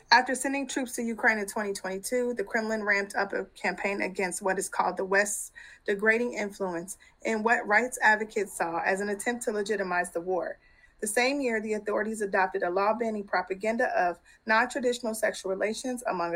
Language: English